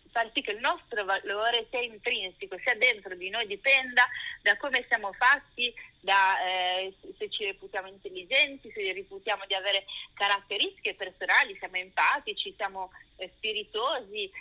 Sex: female